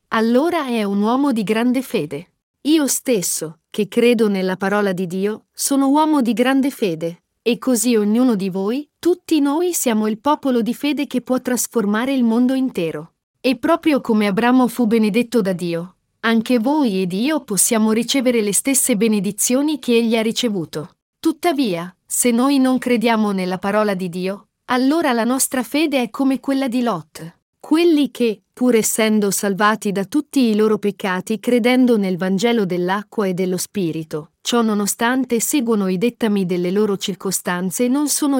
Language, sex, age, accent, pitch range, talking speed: Italian, female, 40-59, native, 195-255 Hz, 165 wpm